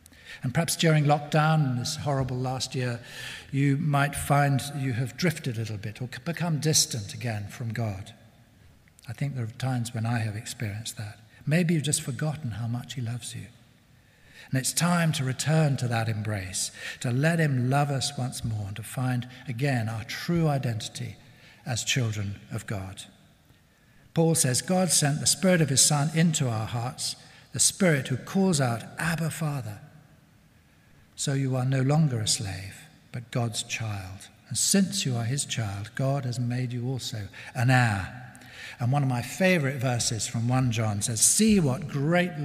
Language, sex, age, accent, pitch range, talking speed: English, male, 60-79, British, 115-145 Hz, 175 wpm